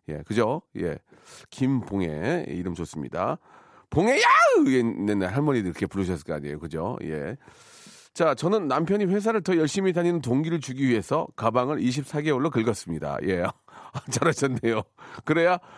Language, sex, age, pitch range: Korean, male, 40-59, 105-155 Hz